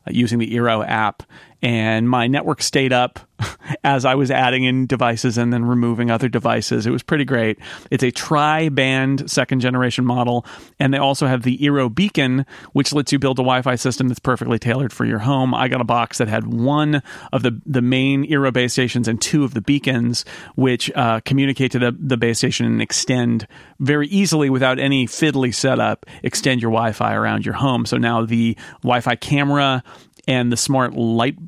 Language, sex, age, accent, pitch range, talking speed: English, male, 40-59, American, 120-140 Hz, 200 wpm